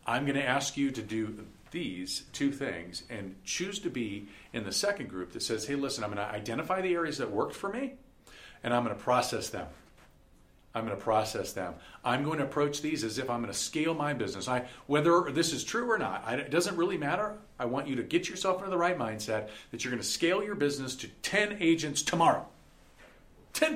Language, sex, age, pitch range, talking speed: English, male, 50-69, 110-170 Hz, 220 wpm